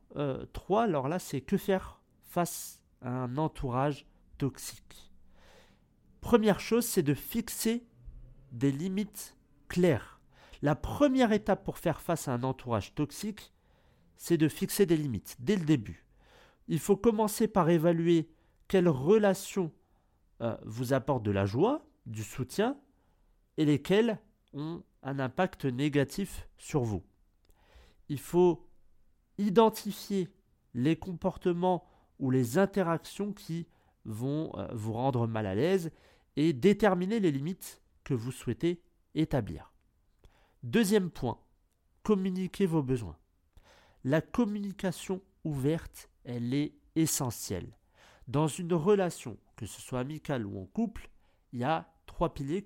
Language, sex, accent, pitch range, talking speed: French, male, French, 120-190 Hz, 125 wpm